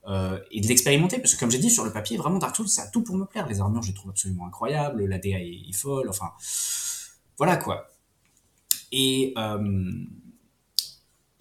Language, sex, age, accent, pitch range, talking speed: French, male, 20-39, French, 100-130 Hz, 195 wpm